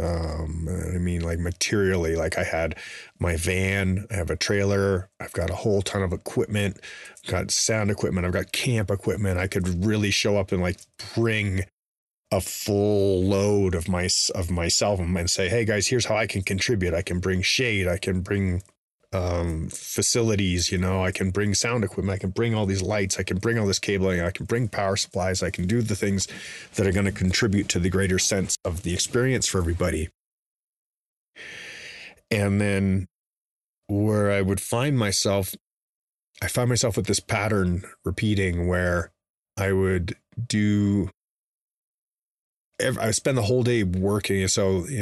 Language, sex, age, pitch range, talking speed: English, male, 30-49, 90-105 Hz, 175 wpm